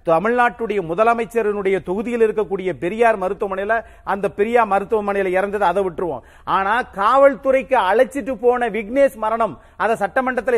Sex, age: male, 40-59